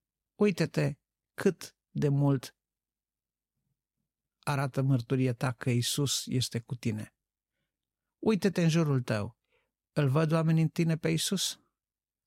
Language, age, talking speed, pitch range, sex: Romanian, 50-69, 115 wpm, 140-170 Hz, male